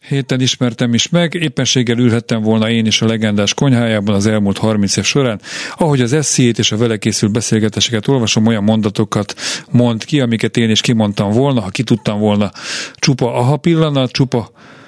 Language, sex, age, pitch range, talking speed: Hungarian, male, 40-59, 110-130 Hz, 170 wpm